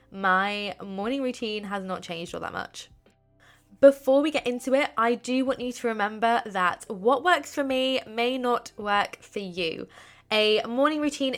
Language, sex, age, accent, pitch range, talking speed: English, female, 20-39, British, 205-265 Hz, 175 wpm